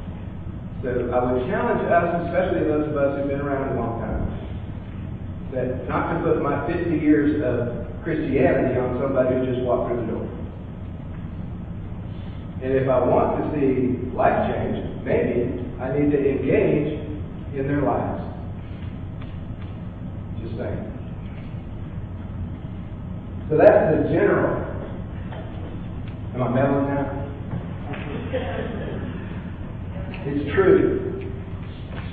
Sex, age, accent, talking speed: male, 40-59, American, 110 wpm